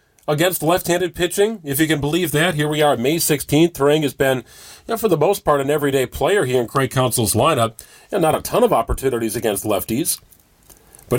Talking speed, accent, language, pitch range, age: 210 wpm, American, English, 125-160 Hz, 40-59